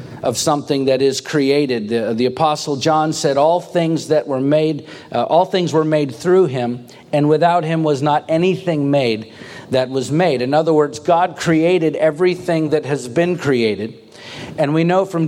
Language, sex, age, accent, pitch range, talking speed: English, male, 50-69, American, 140-170 Hz, 180 wpm